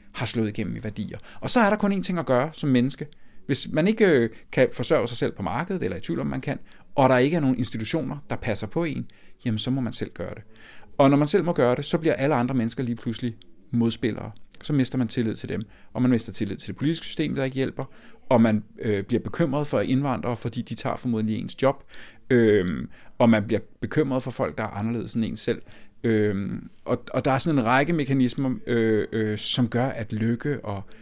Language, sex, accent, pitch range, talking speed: Danish, male, native, 110-140 Hz, 240 wpm